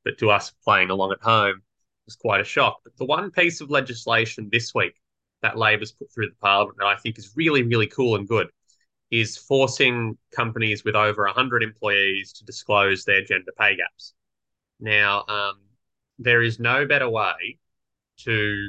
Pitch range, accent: 100-115 Hz, Australian